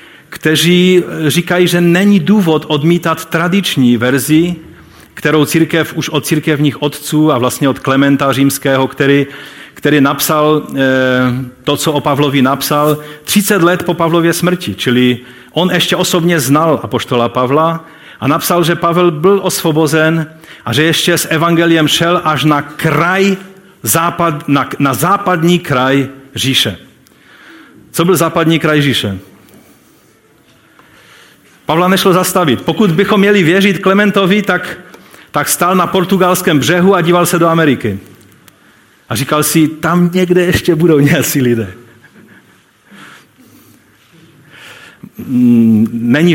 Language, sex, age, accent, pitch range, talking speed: Czech, male, 40-59, native, 140-180 Hz, 120 wpm